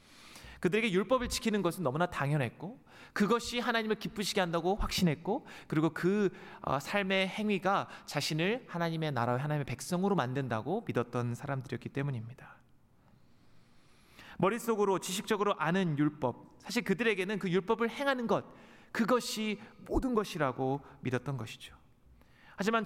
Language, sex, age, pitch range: Korean, male, 30-49, 150-205 Hz